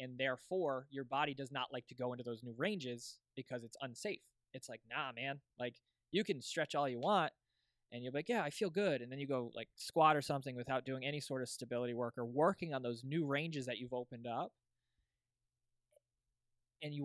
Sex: male